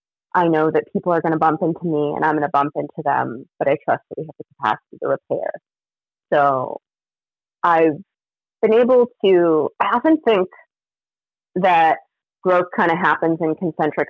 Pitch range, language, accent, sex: 155-190 Hz, English, American, female